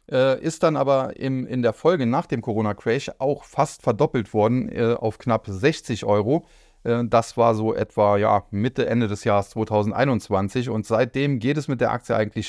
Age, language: 30-49, German